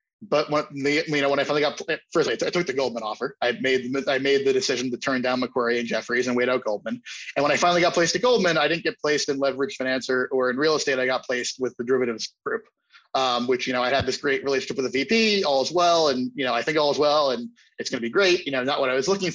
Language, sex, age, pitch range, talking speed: English, male, 20-39, 125-160 Hz, 300 wpm